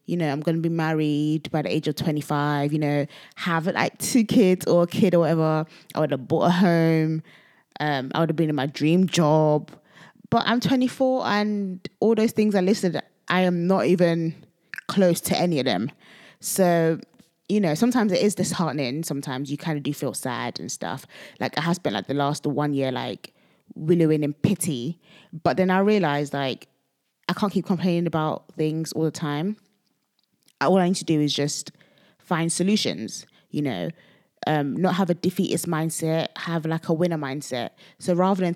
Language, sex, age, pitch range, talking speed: English, female, 20-39, 150-190 Hz, 195 wpm